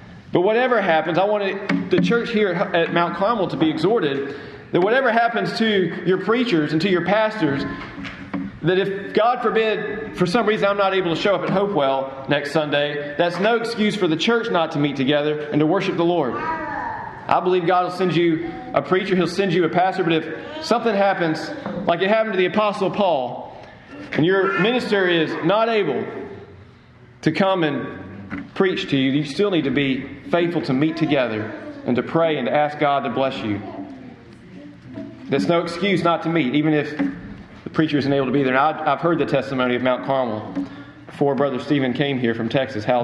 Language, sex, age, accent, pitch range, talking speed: English, male, 40-59, American, 140-190 Hz, 200 wpm